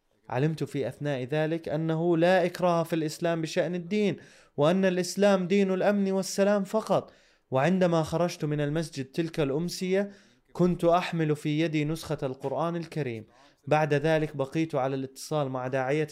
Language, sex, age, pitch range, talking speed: Arabic, male, 20-39, 135-170 Hz, 140 wpm